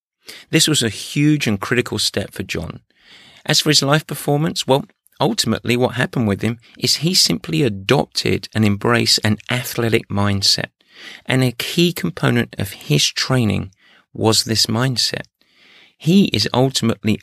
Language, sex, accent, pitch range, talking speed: English, male, British, 105-135 Hz, 145 wpm